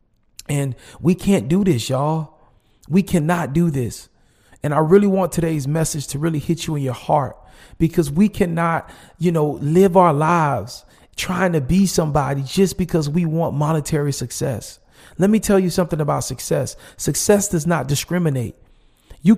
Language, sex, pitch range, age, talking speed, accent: English, male, 145-190 Hz, 40-59, 165 wpm, American